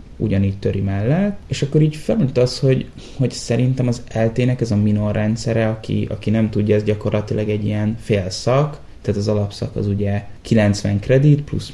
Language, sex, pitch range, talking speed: Hungarian, male, 105-130 Hz, 180 wpm